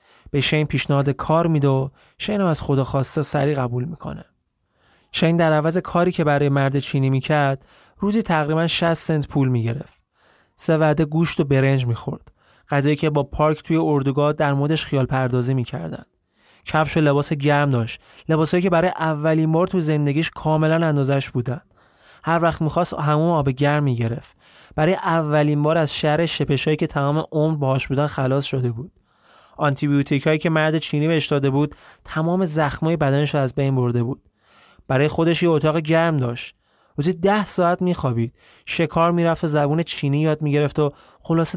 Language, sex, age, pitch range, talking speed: Persian, male, 30-49, 135-165 Hz, 165 wpm